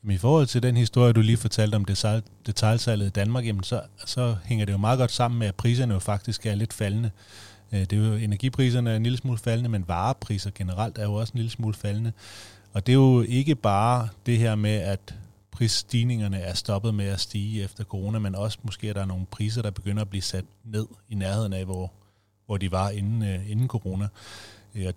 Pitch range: 100-115 Hz